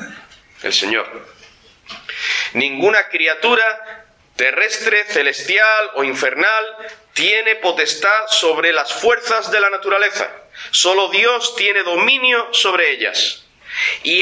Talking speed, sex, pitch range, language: 95 wpm, male, 170-240 Hz, Spanish